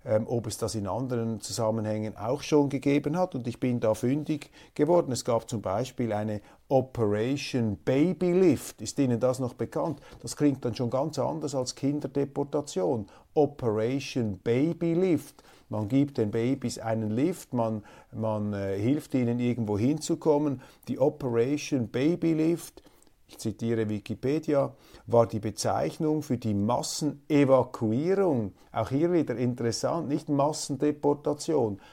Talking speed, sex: 135 wpm, male